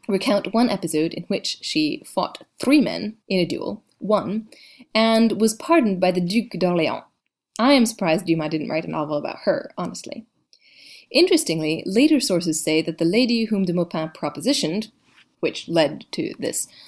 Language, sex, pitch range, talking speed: English, female, 170-250 Hz, 165 wpm